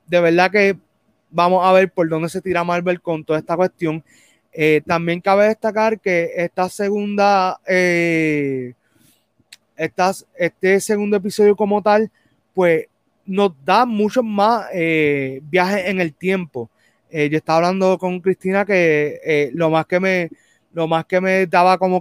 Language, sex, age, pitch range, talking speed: Spanish, male, 20-39, 165-195 Hz, 155 wpm